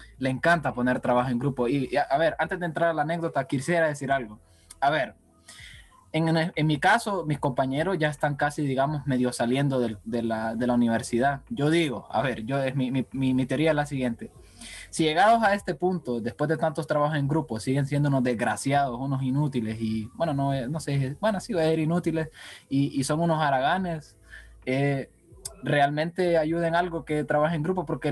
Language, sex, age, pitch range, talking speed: Spanish, male, 20-39, 125-160 Hz, 205 wpm